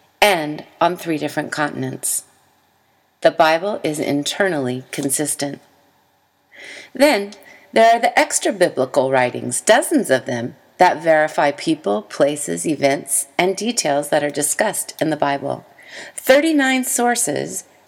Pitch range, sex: 145-225 Hz, female